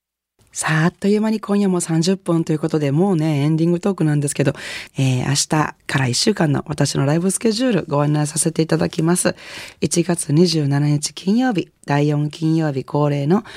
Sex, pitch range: female, 135-180 Hz